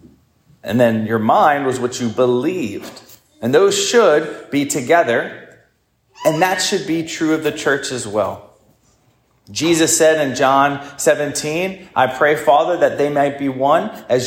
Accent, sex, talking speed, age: American, male, 155 wpm, 30-49